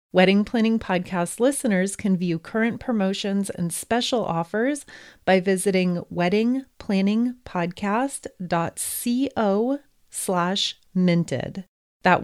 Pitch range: 170-210 Hz